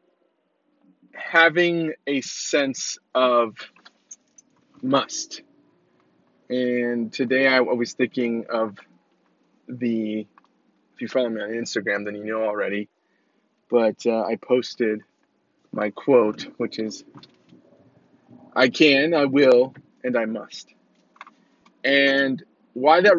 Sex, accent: male, American